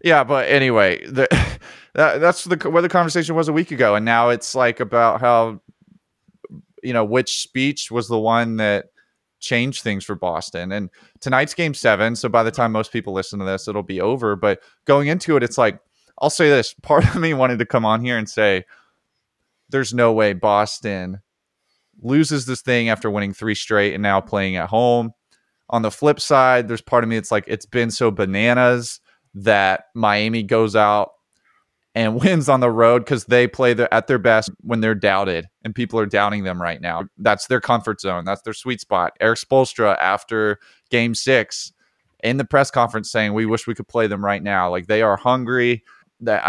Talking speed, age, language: 195 wpm, 20-39, English